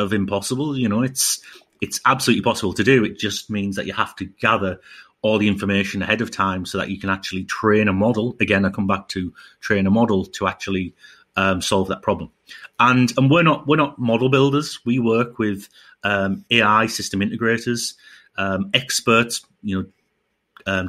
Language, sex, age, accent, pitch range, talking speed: English, male, 30-49, British, 100-125 Hz, 190 wpm